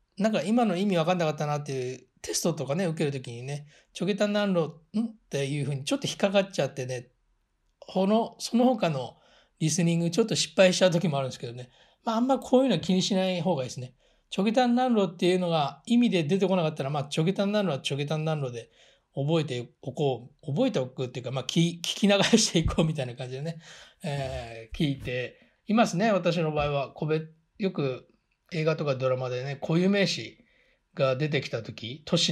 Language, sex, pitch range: Japanese, male, 130-185 Hz